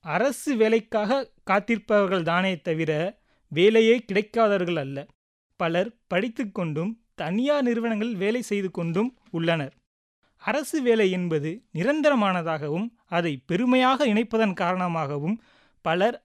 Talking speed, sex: 75 wpm, male